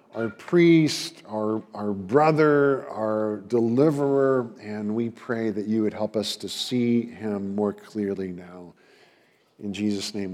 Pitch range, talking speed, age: 115-150 Hz, 140 wpm, 50-69